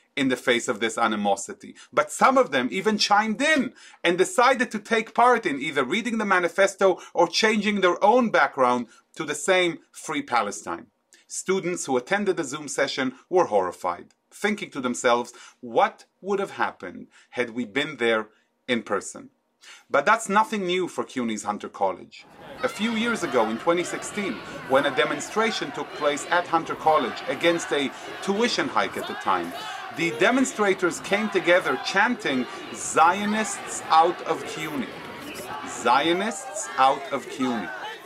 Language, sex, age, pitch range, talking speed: English, male, 40-59, 130-205 Hz, 150 wpm